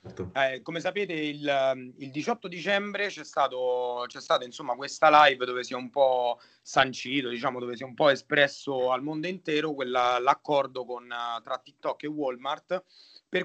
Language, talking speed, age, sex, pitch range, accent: Italian, 160 wpm, 30-49, male, 120-155 Hz, native